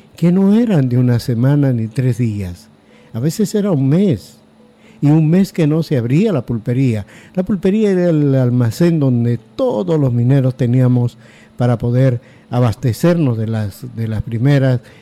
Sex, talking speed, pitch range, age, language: male, 165 wpm, 120-155 Hz, 60-79, Spanish